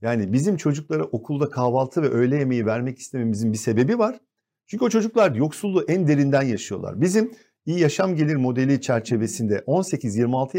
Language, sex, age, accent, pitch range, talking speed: Turkish, male, 50-69, native, 120-170 Hz, 155 wpm